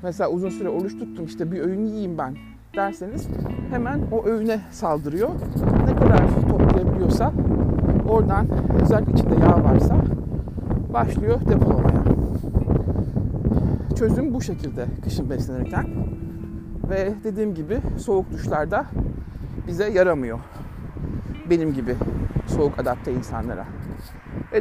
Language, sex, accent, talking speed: Turkish, male, native, 105 wpm